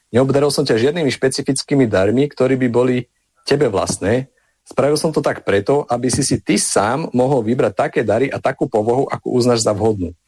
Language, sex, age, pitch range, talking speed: Slovak, male, 40-59, 110-140 Hz, 185 wpm